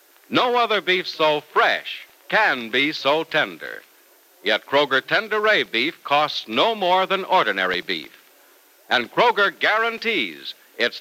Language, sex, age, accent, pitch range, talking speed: English, male, 60-79, American, 135-205 Hz, 125 wpm